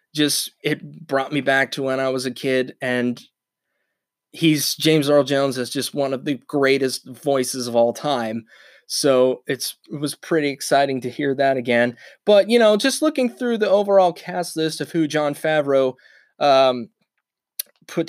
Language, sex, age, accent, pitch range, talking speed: English, male, 20-39, American, 135-170 Hz, 175 wpm